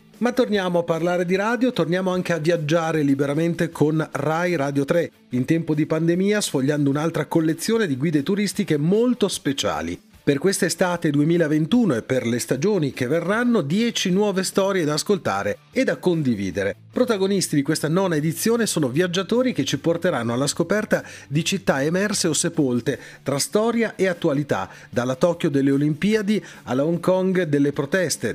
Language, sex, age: Italian, male, 40-59